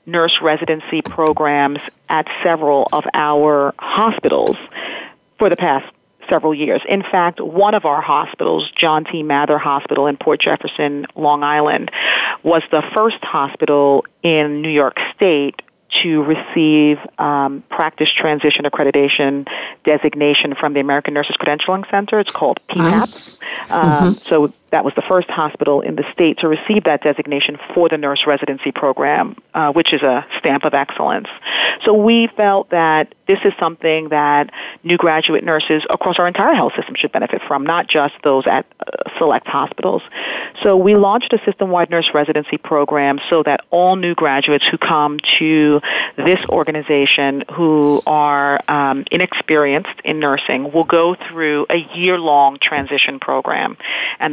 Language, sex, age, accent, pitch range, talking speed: English, female, 40-59, American, 145-170 Hz, 150 wpm